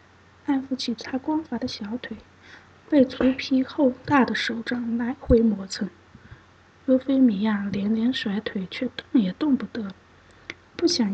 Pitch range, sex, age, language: 205-265 Hz, female, 20-39, Chinese